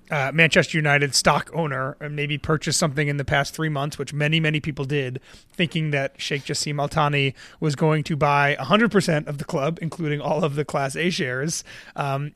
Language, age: English, 30-49